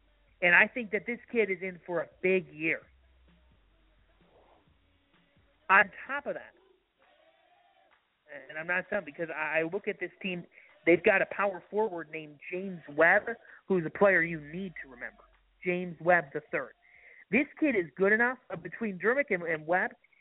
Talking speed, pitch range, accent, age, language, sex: 160 wpm, 170-220 Hz, American, 40-59, English, male